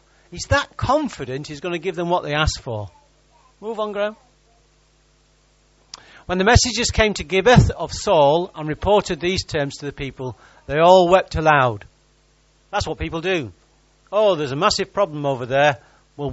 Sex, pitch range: male, 140-195 Hz